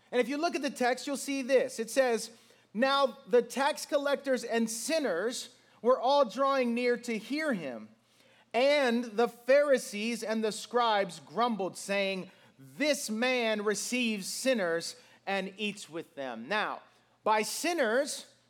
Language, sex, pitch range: English, male, 215-275 Hz